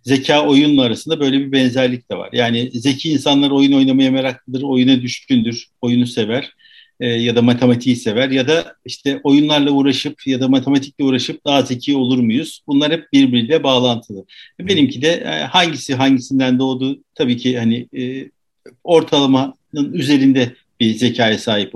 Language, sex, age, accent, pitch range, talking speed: Turkish, male, 50-69, native, 125-170 Hz, 150 wpm